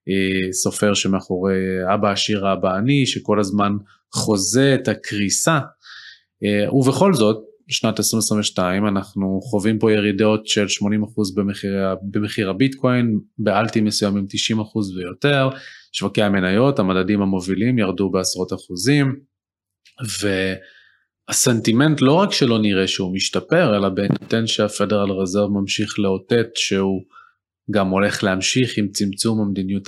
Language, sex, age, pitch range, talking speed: Hebrew, male, 20-39, 100-115 Hz, 110 wpm